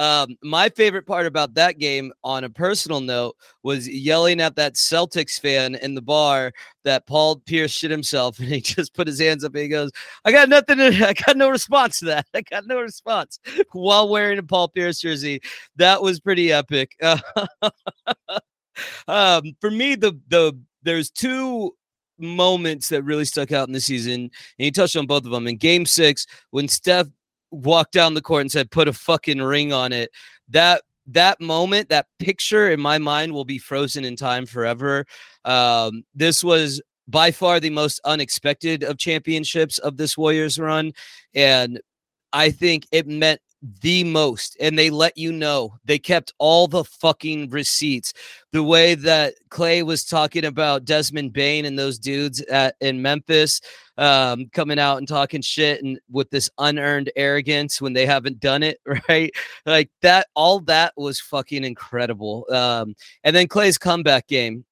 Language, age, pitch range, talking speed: English, 30-49, 140-170 Hz, 175 wpm